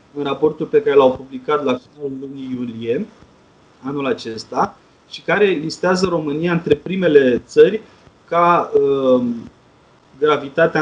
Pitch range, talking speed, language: 135-210 Hz, 120 wpm, Romanian